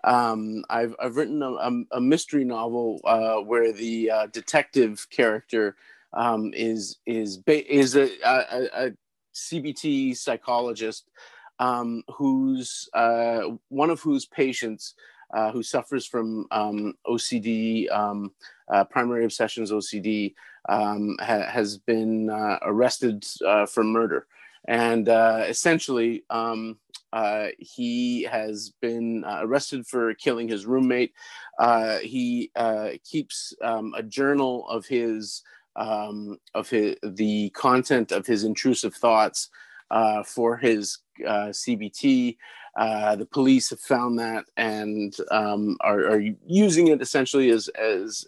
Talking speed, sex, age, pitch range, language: 125 wpm, male, 30-49, 110-130 Hz, English